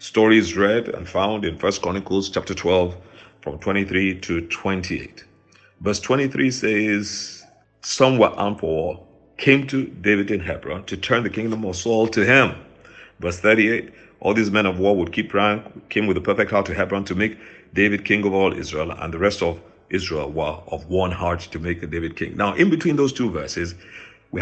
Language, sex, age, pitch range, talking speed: English, male, 50-69, 90-115 Hz, 190 wpm